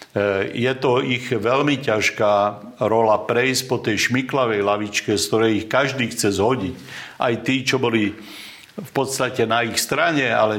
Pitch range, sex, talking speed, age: 105-120 Hz, male, 155 wpm, 50-69